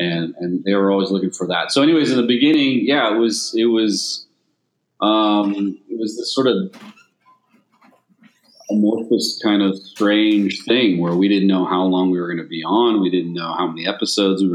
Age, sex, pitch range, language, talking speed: 40-59, male, 90-115 Hz, English, 200 wpm